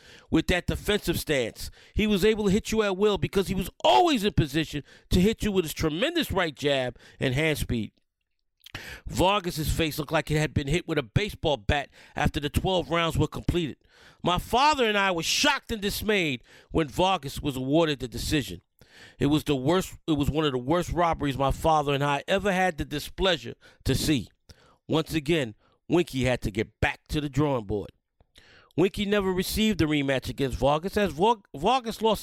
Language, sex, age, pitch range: English, male, 40-59, 150-200 Hz